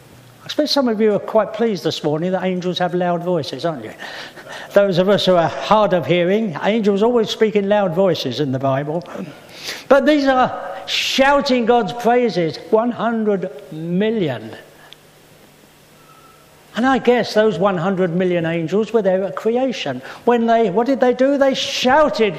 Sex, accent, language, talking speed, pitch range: male, British, English, 165 wpm, 170-230 Hz